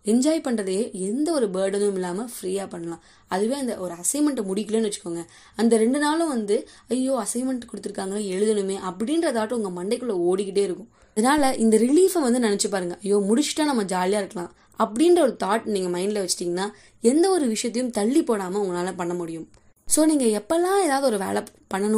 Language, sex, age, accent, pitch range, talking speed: Tamil, female, 20-39, native, 195-260 Hz, 160 wpm